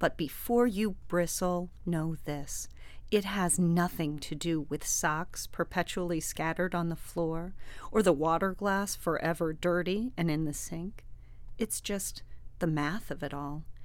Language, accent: English, American